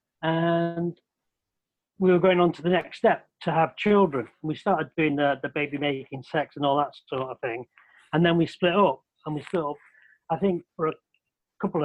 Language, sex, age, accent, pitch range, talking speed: English, male, 40-59, British, 140-165 Hz, 200 wpm